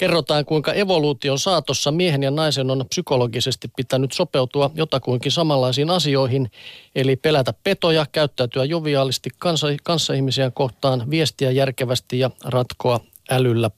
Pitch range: 125-150 Hz